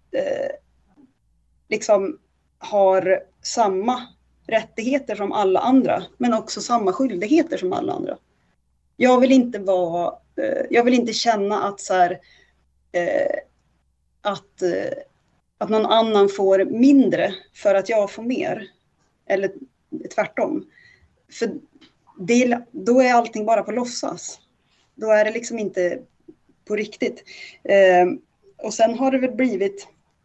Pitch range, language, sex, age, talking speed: 195-265 Hz, Swedish, female, 30-49, 115 wpm